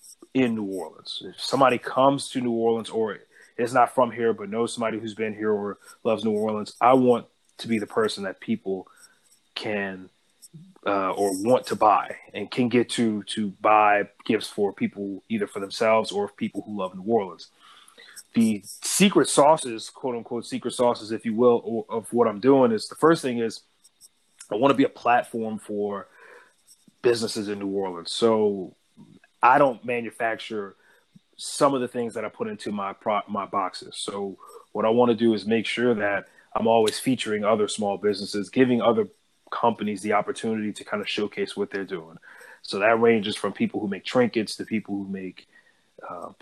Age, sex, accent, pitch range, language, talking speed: 30-49, male, American, 105-125 Hz, English, 185 wpm